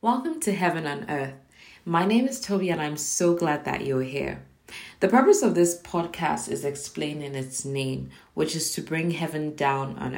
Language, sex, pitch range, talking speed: English, female, 135-160 Hz, 195 wpm